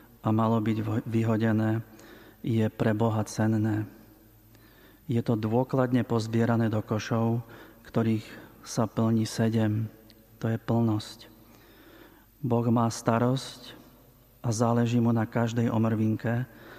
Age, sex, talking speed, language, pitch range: 40-59, male, 105 wpm, Slovak, 110-120 Hz